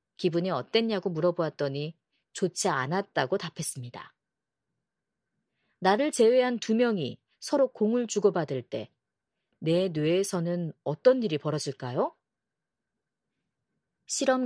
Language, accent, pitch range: Korean, native, 155-245 Hz